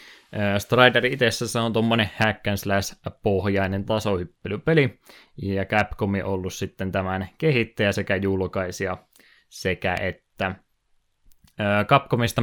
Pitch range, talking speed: 95-110 Hz, 100 wpm